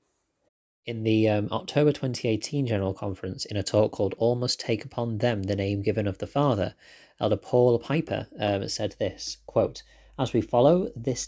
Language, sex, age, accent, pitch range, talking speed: English, male, 30-49, British, 100-125 Hz, 175 wpm